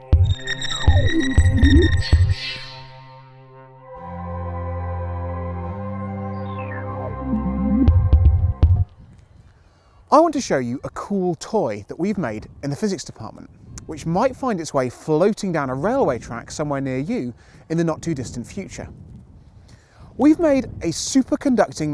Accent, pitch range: British, 115-190 Hz